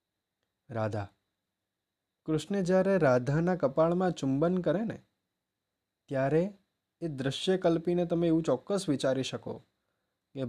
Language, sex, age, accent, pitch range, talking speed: Gujarati, male, 20-39, native, 115-155 Hz, 85 wpm